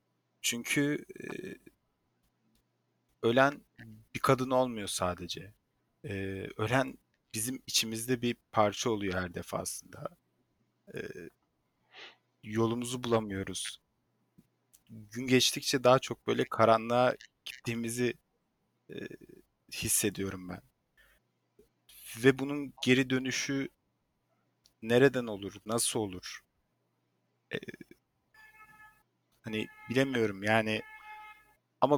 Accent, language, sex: native, Turkish, male